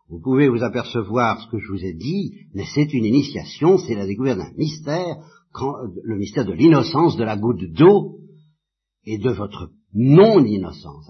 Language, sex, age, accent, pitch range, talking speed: French, male, 60-79, French, 105-155 Hz, 170 wpm